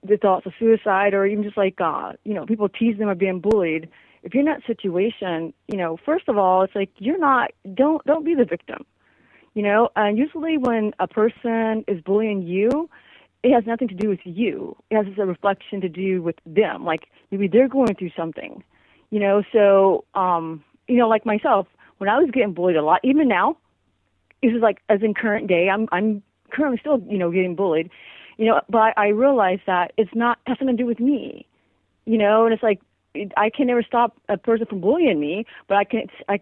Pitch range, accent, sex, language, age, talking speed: 185-230 Hz, American, female, English, 30-49, 215 wpm